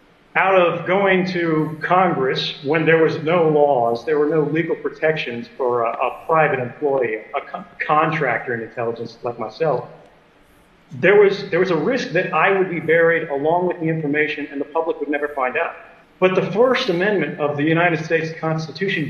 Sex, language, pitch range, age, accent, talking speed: male, English, 150-185 Hz, 40-59, American, 175 wpm